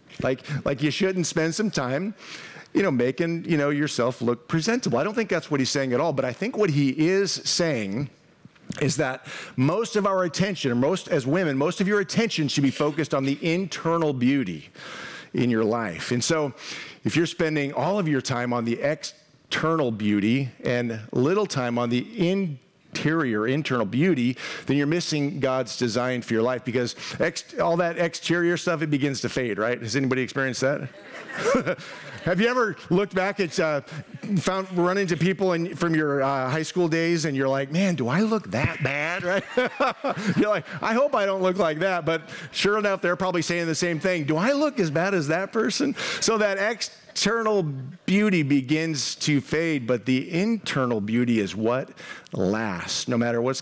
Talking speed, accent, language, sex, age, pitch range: 190 wpm, American, English, male, 50-69, 130-180 Hz